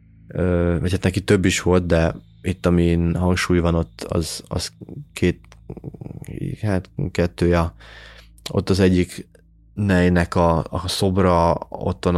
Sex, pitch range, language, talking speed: male, 85-95 Hz, Hungarian, 125 wpm